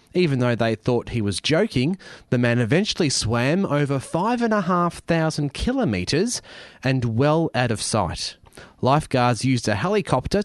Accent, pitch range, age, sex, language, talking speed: Australian, 110-155 Hz, 30-49, male, English, 155 wpm